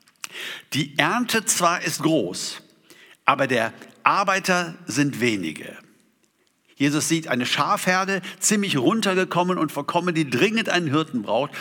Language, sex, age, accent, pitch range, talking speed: German, male, 60-79, German, 145-195 Hz, 120 wpm